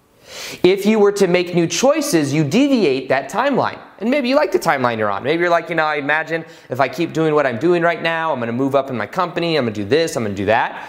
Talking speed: 275 wpm